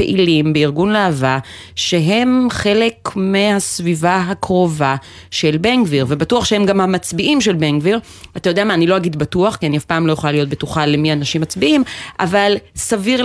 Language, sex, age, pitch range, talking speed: Hebrew, female, 30-49, 145-200 Hz, 170 wpm